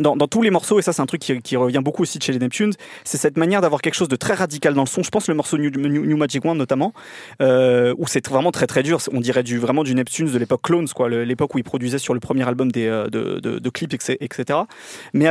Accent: French